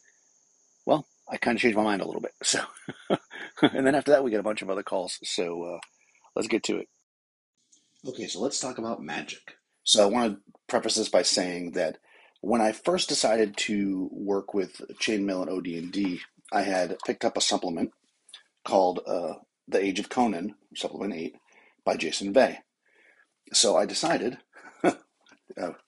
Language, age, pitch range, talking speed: English, 40-59, 95-110 Hz, 170 wpm